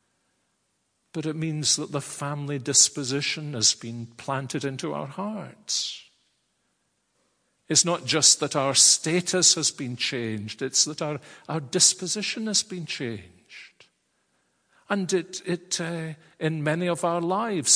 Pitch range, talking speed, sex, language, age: 130-185 Hz, 130 wpm, male, English, 50-69